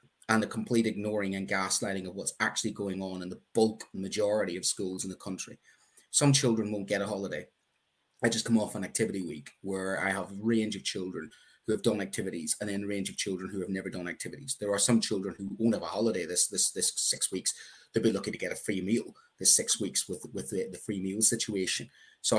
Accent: British